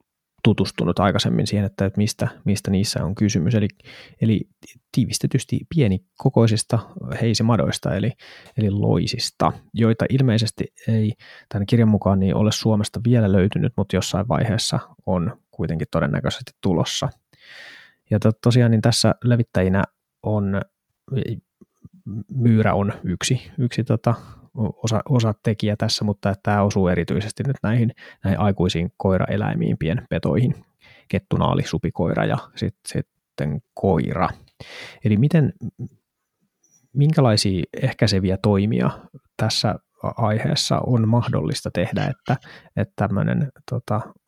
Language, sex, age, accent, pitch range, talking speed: Finnish, male, 20-39, native, 100-120 Hz, 110 wpm